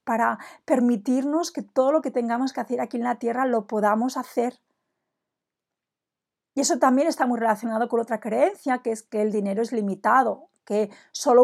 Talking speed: 180 wpm